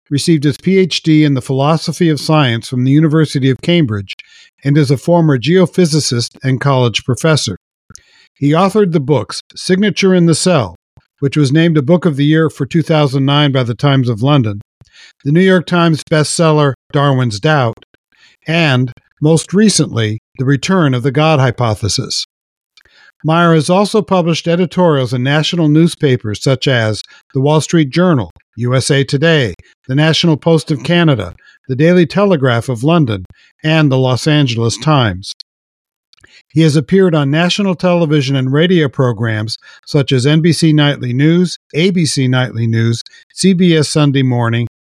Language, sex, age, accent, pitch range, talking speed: English, male, 50-69, American, 130-165 Hz, 150 wpm